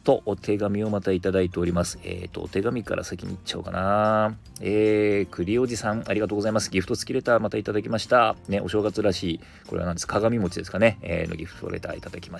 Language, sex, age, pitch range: Japanese, male, 40-59, 95-125 Hz